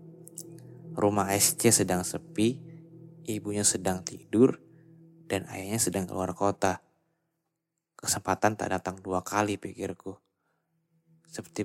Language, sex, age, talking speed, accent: Indonesian, male, 20-39, 100 wpm, native